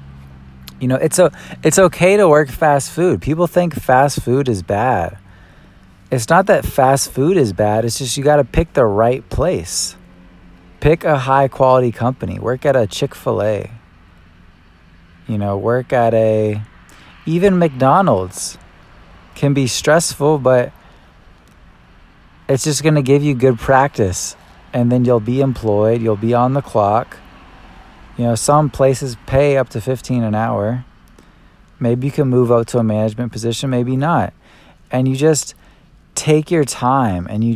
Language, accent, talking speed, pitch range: English, American, 160 wpm, 110-135 Hz